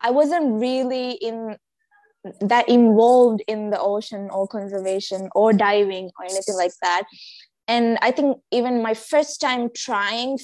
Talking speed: 145 wpm